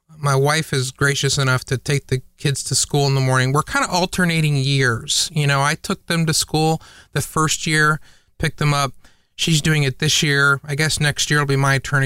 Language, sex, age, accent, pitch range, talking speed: English, male, 30-49, American, 135-160 Hz, 225 wpm